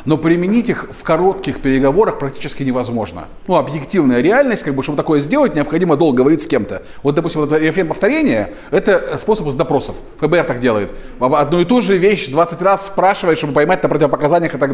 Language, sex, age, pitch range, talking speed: Russian, male, 30-49, 150-195 Hz, 195 wpm